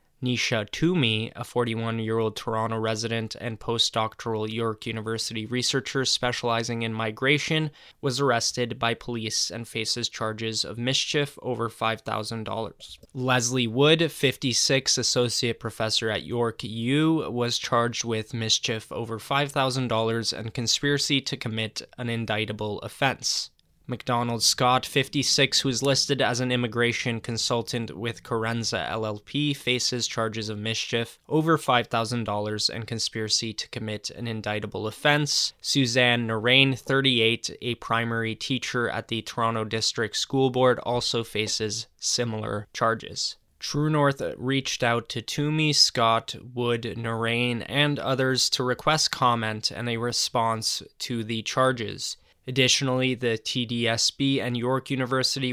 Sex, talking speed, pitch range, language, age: male, 125 wpm, 110-130 Hz, English, 10-29